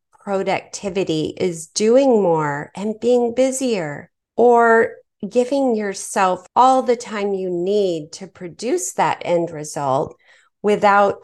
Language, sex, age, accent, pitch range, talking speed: English, female, 30-49, American, 175-220 Hz, 110 wpm